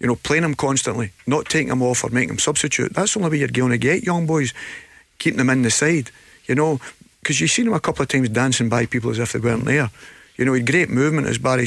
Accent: British